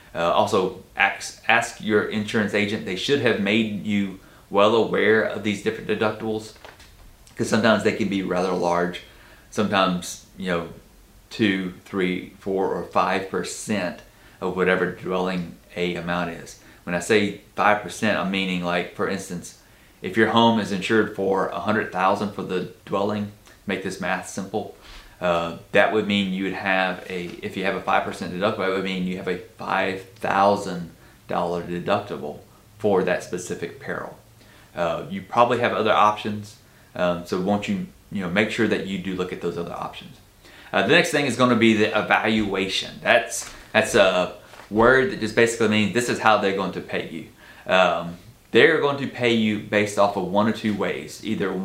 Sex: male